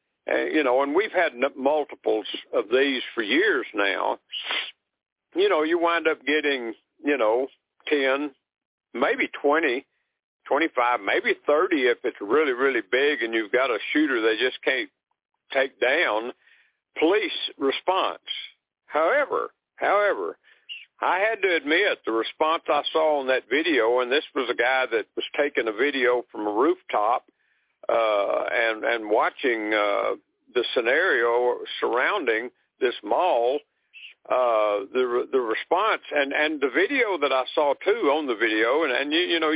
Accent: American